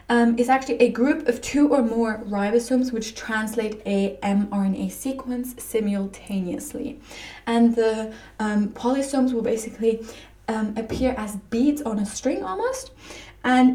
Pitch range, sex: 205-250 Hz, female